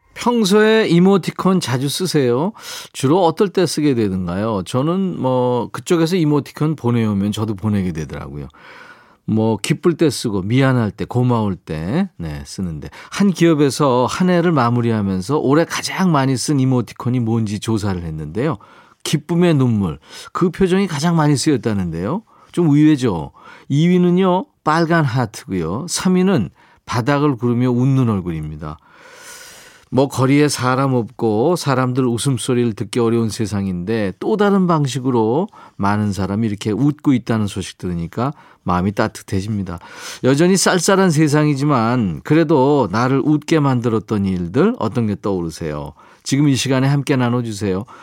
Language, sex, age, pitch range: Korean, male, 40-59, 110-165 Hz